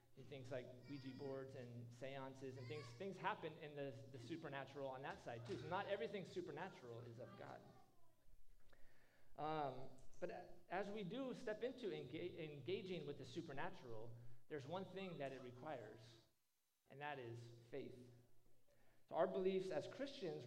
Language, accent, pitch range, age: English, American, 125-180 Hz, 30-49